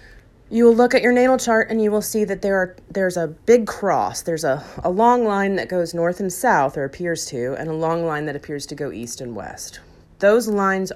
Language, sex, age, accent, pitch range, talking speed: English, female, 30-49, American, 155-205 Hz, 240 wpm